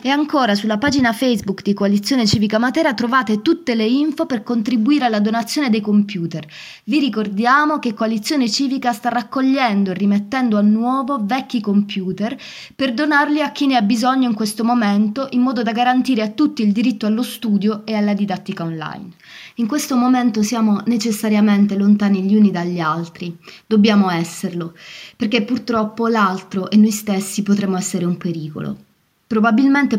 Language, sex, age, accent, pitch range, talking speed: Italian, female, 20-39, native, 200-245 Hz, 160 wpm